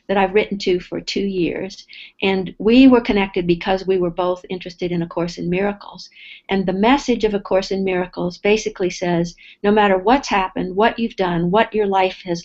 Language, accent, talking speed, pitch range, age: English, American, 200 wpm, 180-210 Hz, 50-69